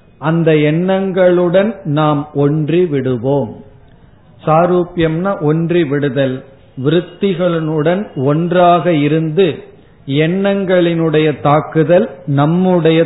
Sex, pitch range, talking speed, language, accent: male, 145-180 Hz, 65 wpm, Tamil, native